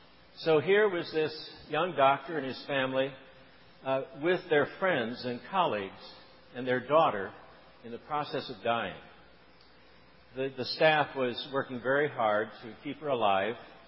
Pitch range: 125-155 Hz